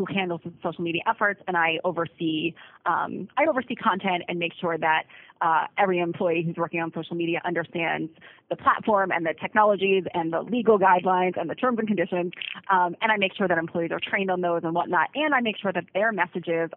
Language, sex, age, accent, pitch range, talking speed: English, female, 30-49, American, 170-215 Hz, 210 wpm